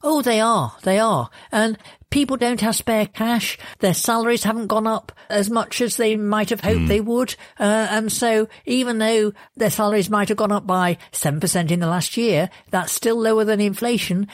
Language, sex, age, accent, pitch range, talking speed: English, female, 50-69, British, 175-220 Hz, 195 wpm